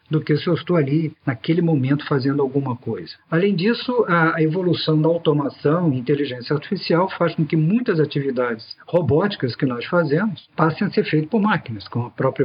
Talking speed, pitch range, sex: 185 wpm, 140-170 Hz, male